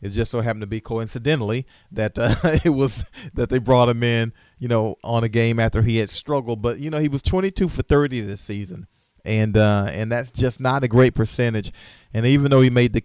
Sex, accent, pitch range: male, American, 105-125 Hz